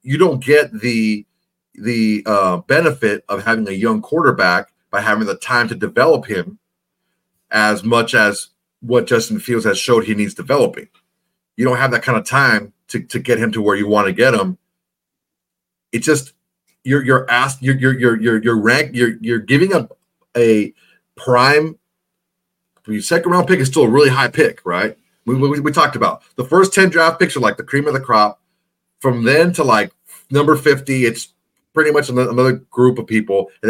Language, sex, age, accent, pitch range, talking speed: English, male, 40-59, American, 110-150 Hz, 190 wpm